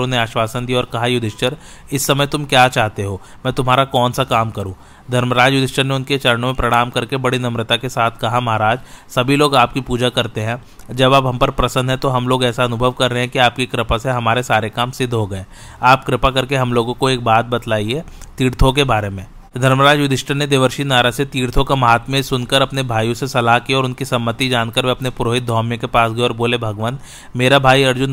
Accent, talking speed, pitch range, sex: native, 220 wpm, 115-130 Hz, male